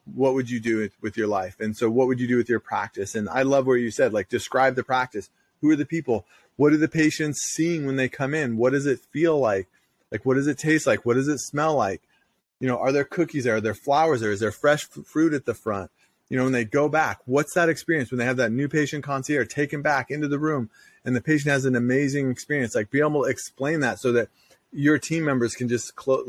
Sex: male